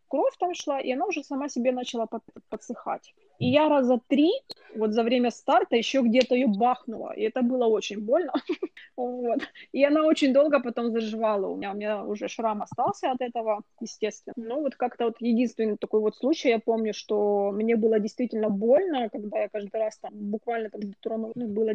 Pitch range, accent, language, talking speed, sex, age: 230-275 Hz, native, Russian, 175 wpm, female, 20-39